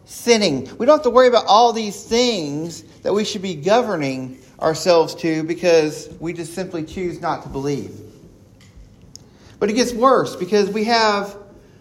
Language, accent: English, American